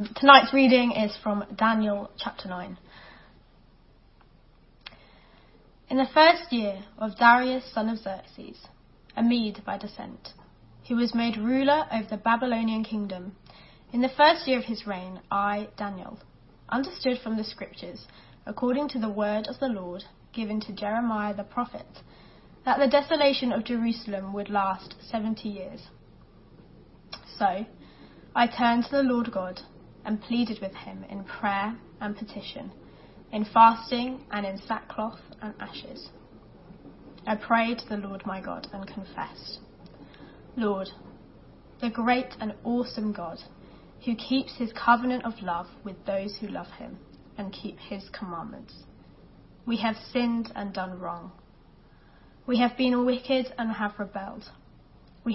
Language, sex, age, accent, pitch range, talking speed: English, female, 20-39, British, 200-245 Hz, 140 wpm